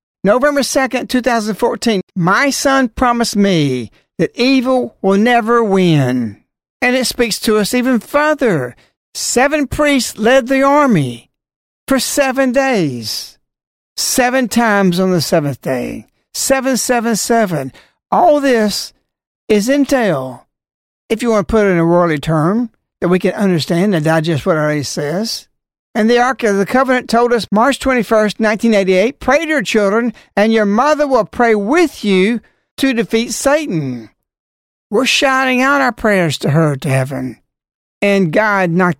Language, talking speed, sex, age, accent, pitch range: English, 150 wpm, male, 60-79, American, 165-250 Hz